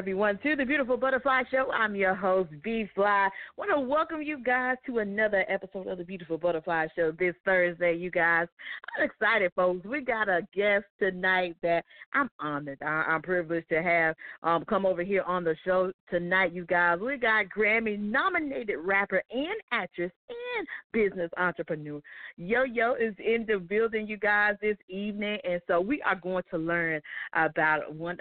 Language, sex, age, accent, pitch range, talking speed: English, female, 40-59, American, 175-220 Hz, 175 wpm